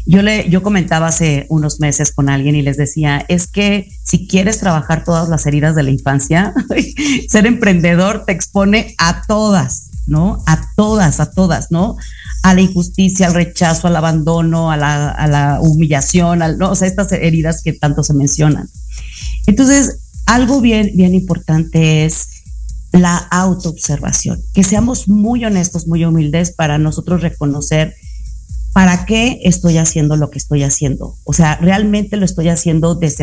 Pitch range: 150-185 Hz